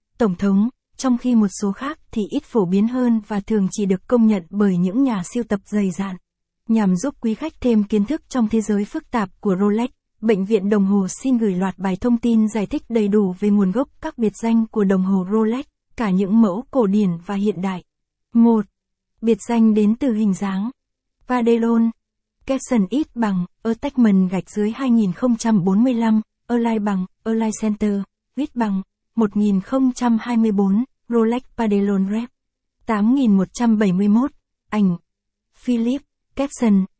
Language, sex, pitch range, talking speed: Vietnamese, female, 200-240 Hz, 160 wpm